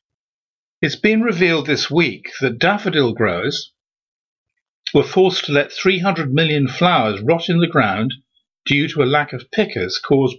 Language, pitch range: English, 130-170 Hz